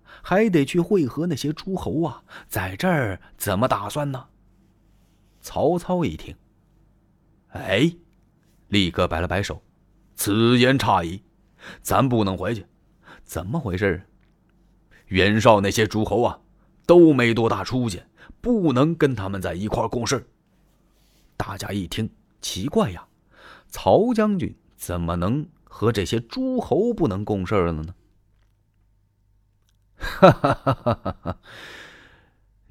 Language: Chinese